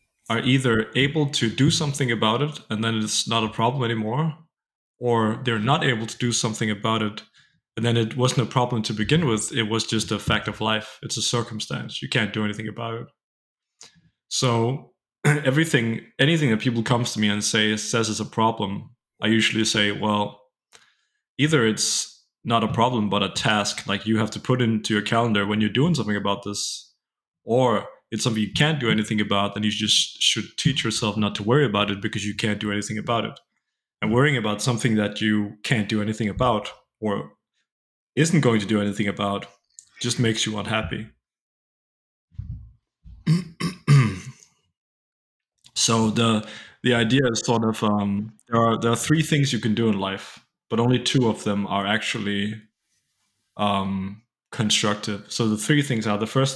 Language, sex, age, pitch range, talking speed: English, male, 20-39, 105-125 Hz, 180 wpm